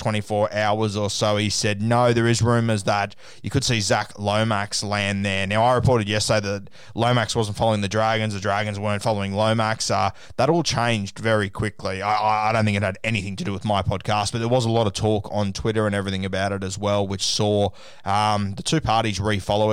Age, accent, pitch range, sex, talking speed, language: 20-39, Australian, 100-115 Hz, male, 225 wpm, English